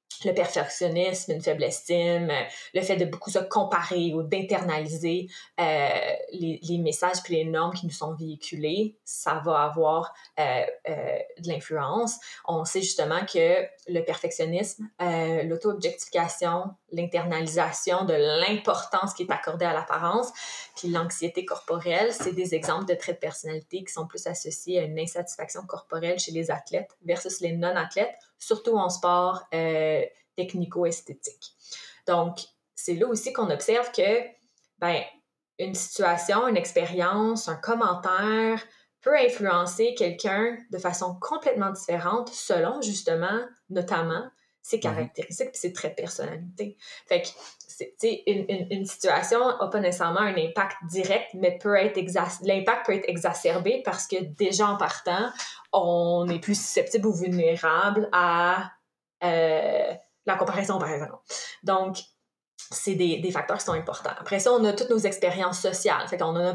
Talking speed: 150 wpm